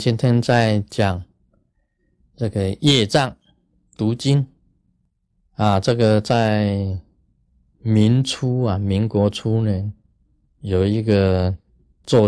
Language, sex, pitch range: Chinese, male, 95-125 Hz